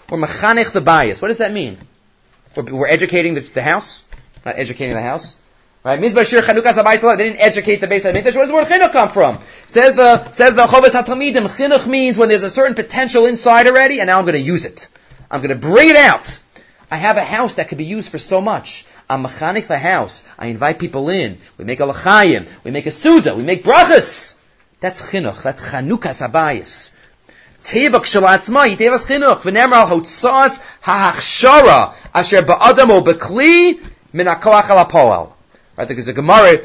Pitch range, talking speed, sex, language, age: 170-255 Hz, 160 wpm, male, English, 30-49